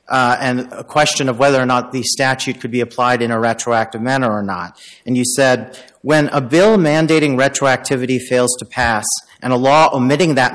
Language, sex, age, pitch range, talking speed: English, male, 40-59, 125-145 Hz, 200 wpm